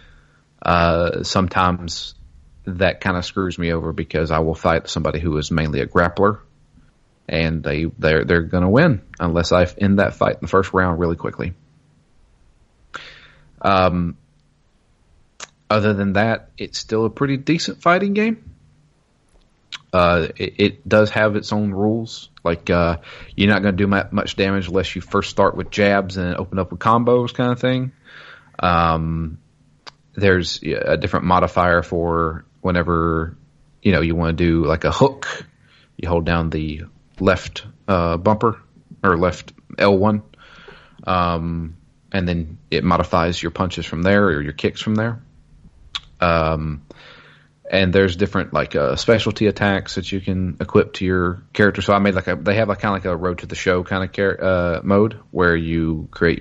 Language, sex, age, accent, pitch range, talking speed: English, male, 30-49, American, 85-100 Hz, 170 wpm